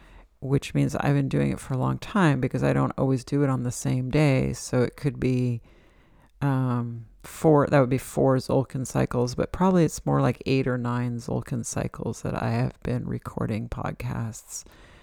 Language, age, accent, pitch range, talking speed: English, 40-59, American, 110-145 Hz, 190 wpm